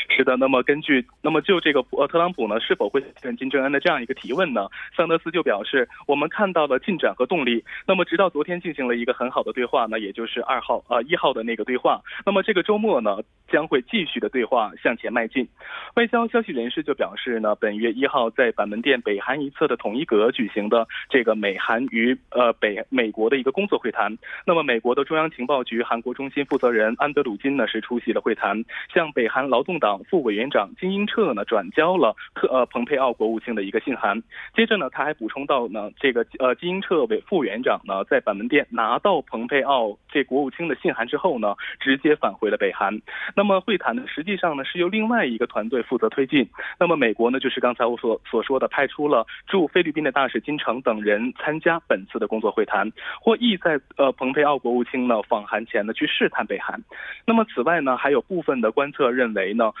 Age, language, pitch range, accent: 20-39, Korean, 125-195 Hz, Chinese